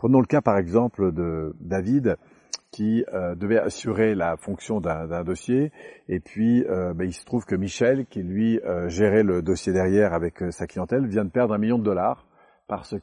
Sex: male